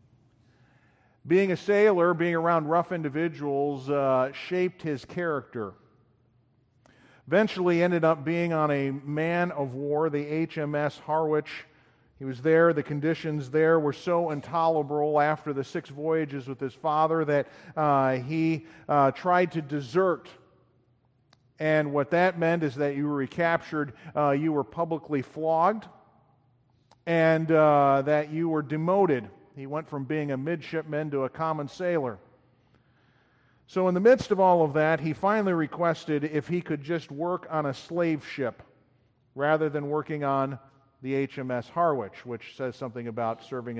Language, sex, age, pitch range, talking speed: English, male, 50-69, 135-165 Hz, 145 wpm